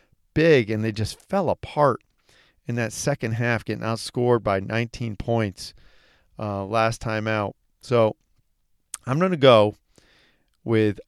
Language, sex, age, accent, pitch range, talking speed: English, male, 40-59, American, 110-140 Hz, 135 wpm